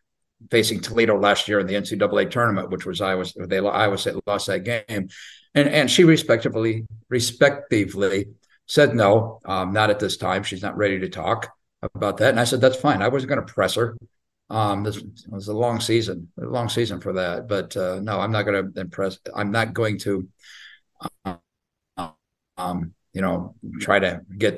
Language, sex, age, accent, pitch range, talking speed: English, male, 50-69, American, 100-120 Hz, 195 wpm